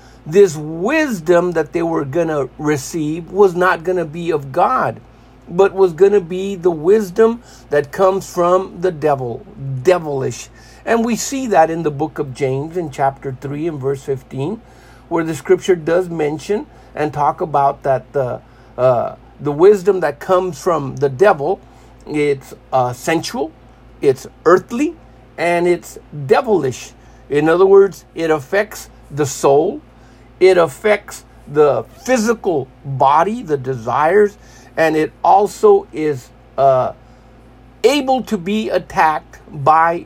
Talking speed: 140 wpm